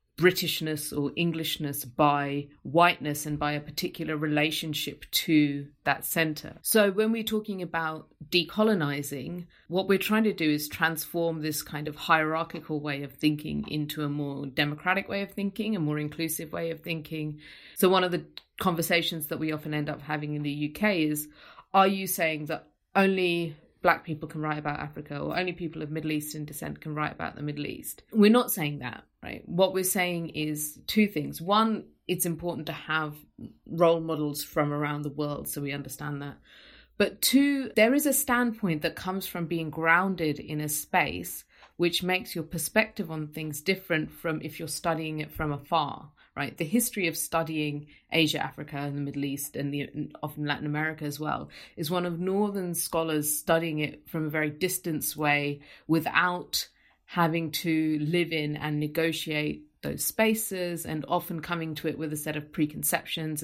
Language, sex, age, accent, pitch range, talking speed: English, female, 30-49, British, 150-175 Hz, 180 wpm